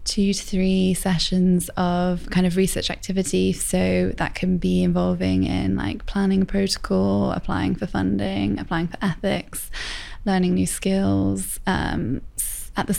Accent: British